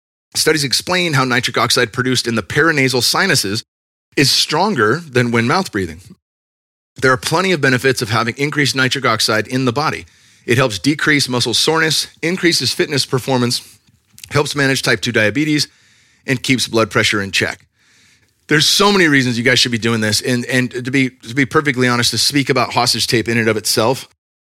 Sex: male